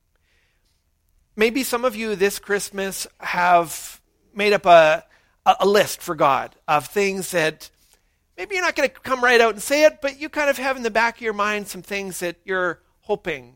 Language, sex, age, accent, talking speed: English, male, 40-59, American, 195 wpm